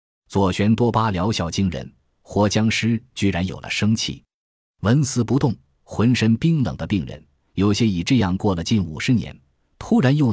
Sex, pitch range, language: male, 90-115 Hz, Chinese